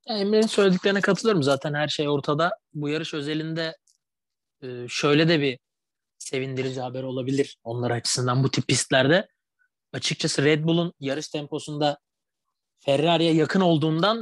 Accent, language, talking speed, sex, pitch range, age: native, Turkish, 120 wpm, male, 130-165 Hz, 30-49